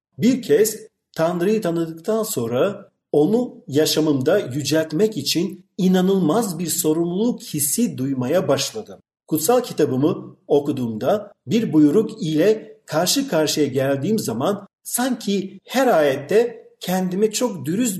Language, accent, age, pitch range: Turkish, native, 50-69, 145-215 Hz